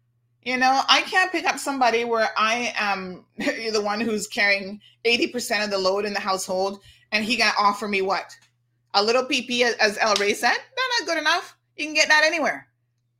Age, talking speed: 30-49, 205 wpm